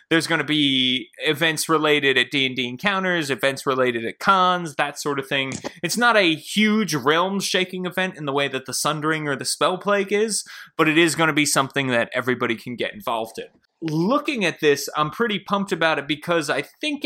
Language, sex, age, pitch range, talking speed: English, male, 20-39, 125-160 Hz, 205 wpm